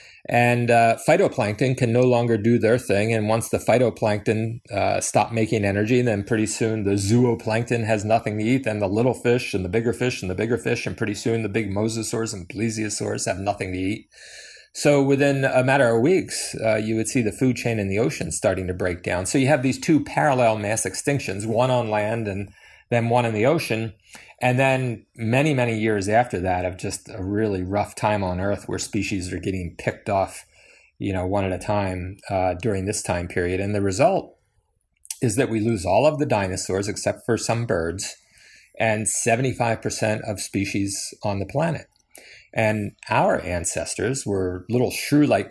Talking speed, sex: 195 wpm, male